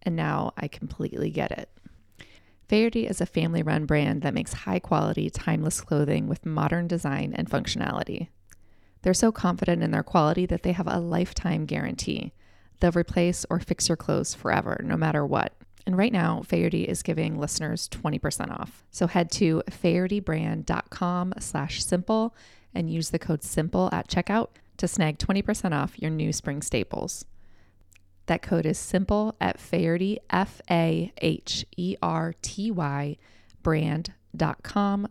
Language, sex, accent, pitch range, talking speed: English, female, American, 155-190 Hz, 135 wpm